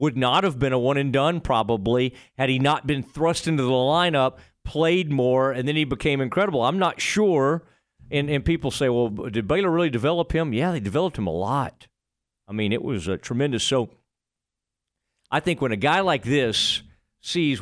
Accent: American